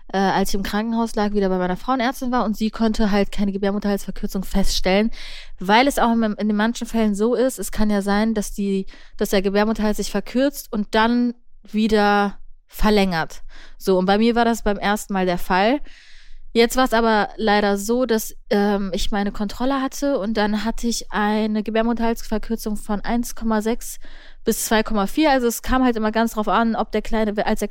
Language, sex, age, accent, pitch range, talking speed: German, female, 20-39, German, 200-230 Hz, 190 wpm